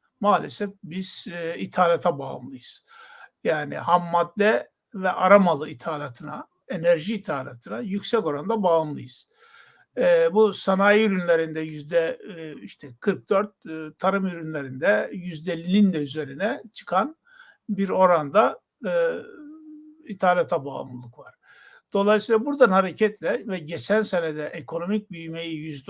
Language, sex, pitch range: Turkish, male, 160-210 Hz